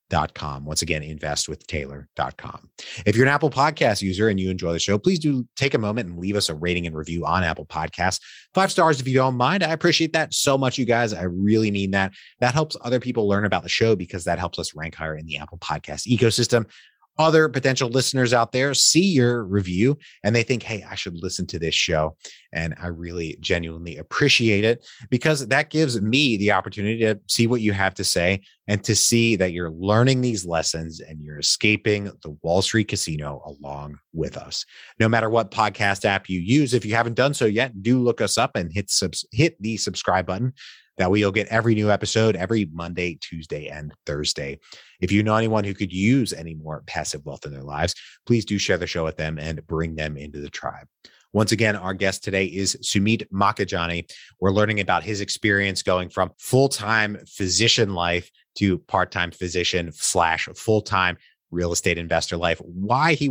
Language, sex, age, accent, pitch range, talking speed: English, male, 30-49, American, 85-115 Hz, 200 wpm